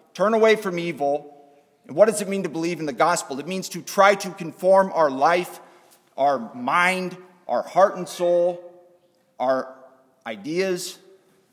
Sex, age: male, 40-59